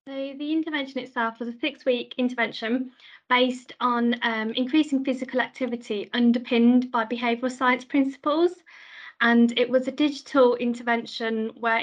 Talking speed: 130 wpm